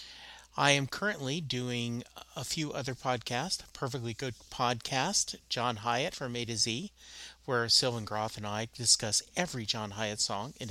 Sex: male